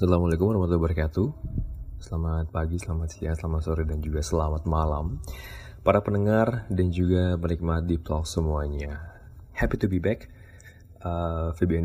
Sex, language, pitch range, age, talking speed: male, Indonesian, 80-95 Hz, 20-39, 135 wpm